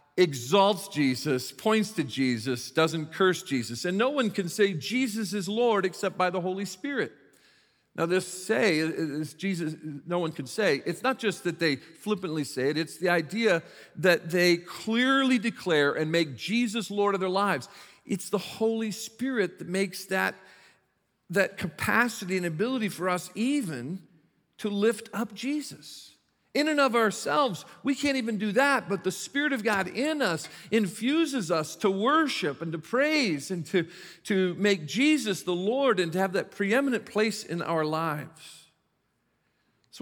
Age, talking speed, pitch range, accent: 50-69, 165 wpm, 155-220 Hz, American